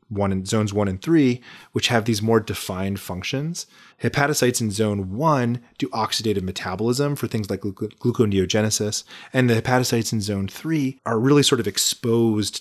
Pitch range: 100-125 Hz